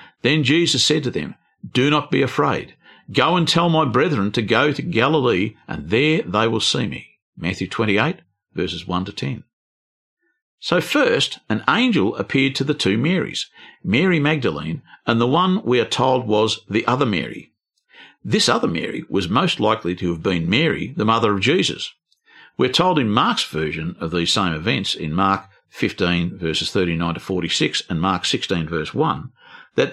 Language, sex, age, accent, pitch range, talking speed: English, male, 50-69, Australian, 100-160 Hz, 170 wpm